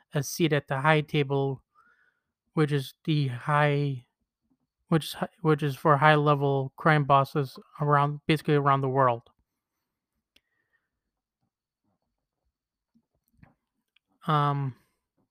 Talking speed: 95 wpm